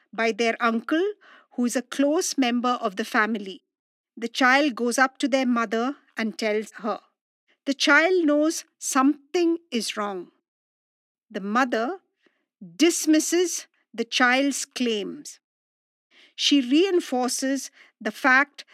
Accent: Indian